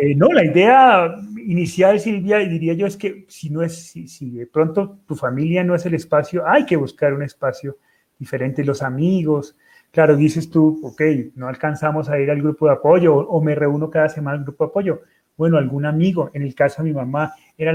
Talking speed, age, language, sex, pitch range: 215 wpm, 30-49, Spanish, male, 140-175 Hz